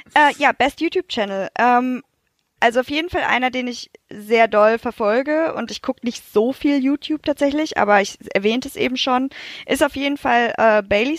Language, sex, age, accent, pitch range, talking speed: German, female, 10-29, German, 210-260 Hz, 195 wpm